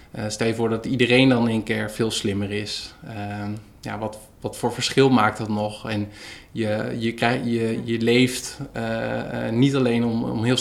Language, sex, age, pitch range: Dutch, male, 20-39, 110-125 Hz